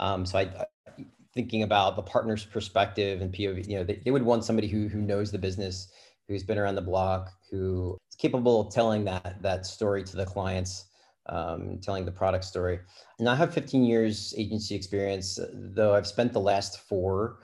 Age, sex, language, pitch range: 30-49, male, English, 95-105 Hz